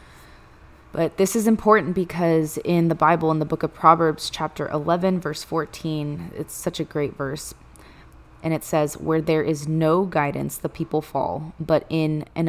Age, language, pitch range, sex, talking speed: 20-39, English, 150-165 Hz, female, 175 wpm